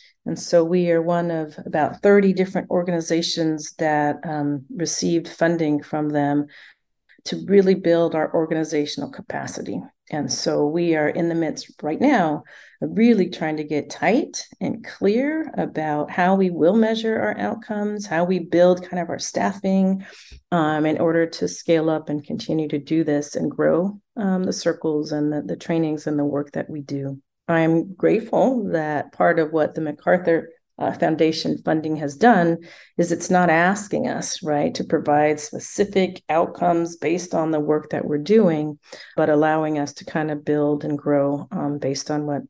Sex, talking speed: female, 170 wpm